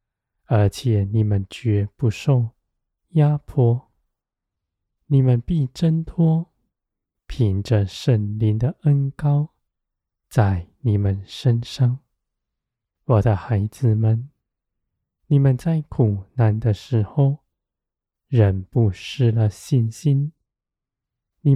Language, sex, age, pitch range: Chinese, male, 20-39, 105-135 Hz